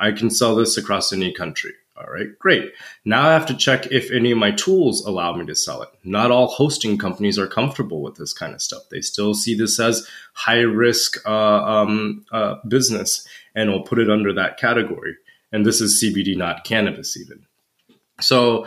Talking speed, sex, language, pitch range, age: 195 wpm, male, English, 105-125 Hz, 20-39